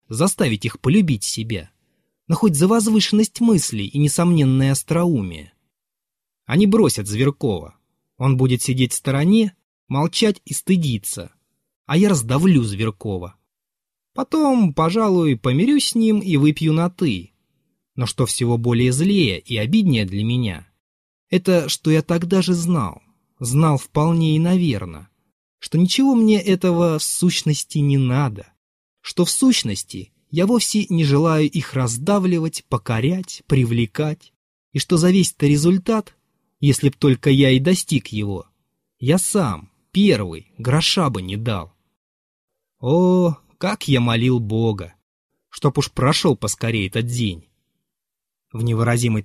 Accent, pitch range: native, 115-175 Hz